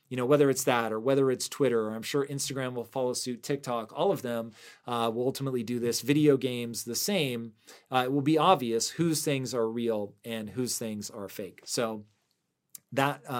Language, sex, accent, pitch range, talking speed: English, male, American, 115-140 Hz, 200 wpm